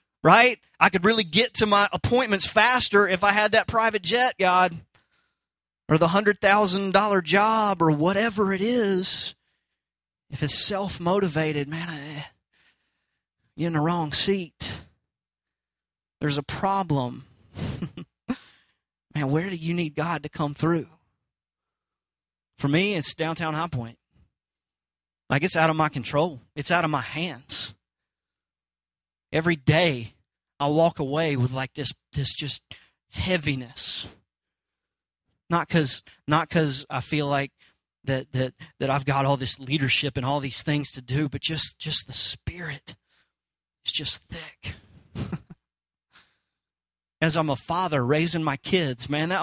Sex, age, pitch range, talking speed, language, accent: male, 30-49, 130-175 Hz, 135 wpm, English, American